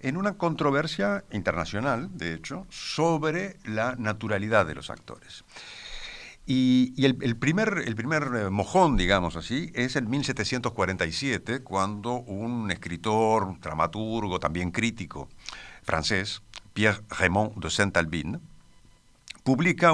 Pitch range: 105-150 Hz